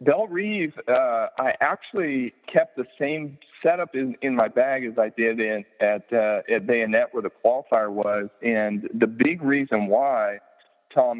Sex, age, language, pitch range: male, 40-59, English, 105-130 Hz